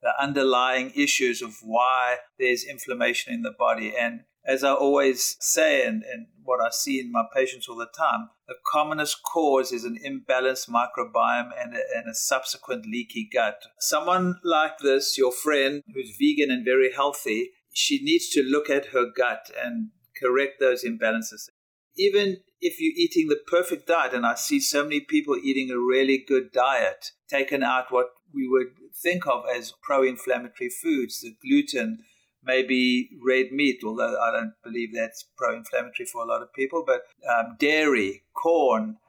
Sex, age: male, 50-69